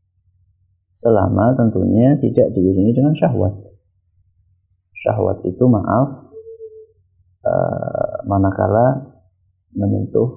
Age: 30-49